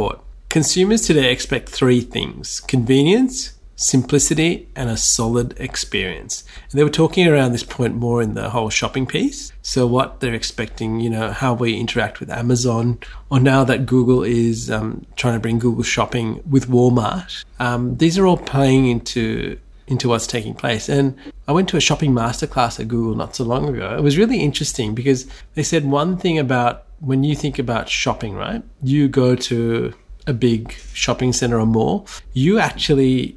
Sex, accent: male, Australian